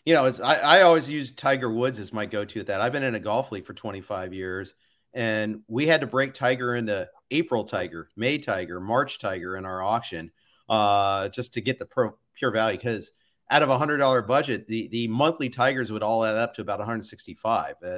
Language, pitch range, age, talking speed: English, 110-175 Hz, 40-59, 210 wpm